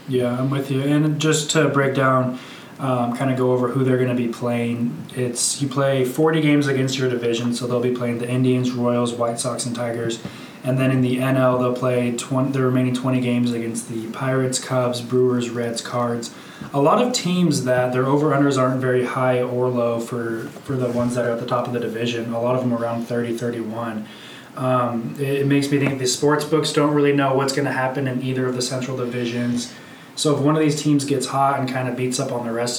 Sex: male